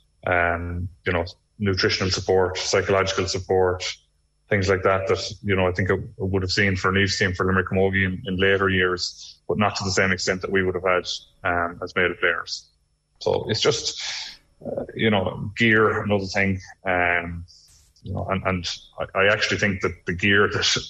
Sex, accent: male, Irish